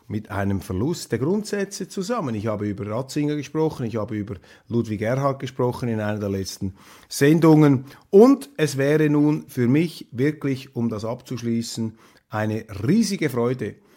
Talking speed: 150 wpm